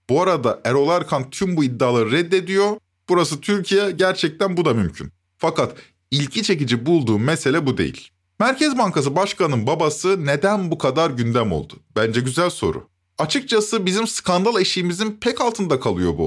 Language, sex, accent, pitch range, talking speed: Turkish, male, native, 130-195 Hz, 150 wpm